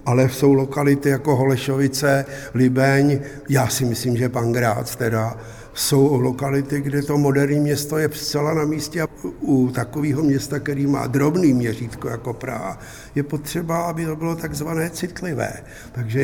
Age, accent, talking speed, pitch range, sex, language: 60-79, native, 150 wpm, 125-145 Hz, male, Czech